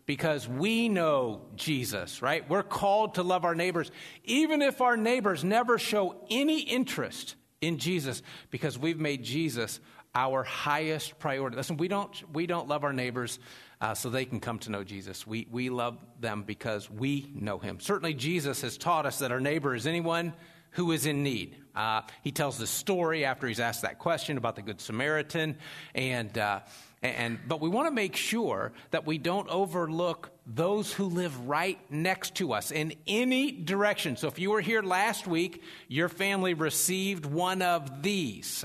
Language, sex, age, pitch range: English, male, 50-69, 130-185 Hz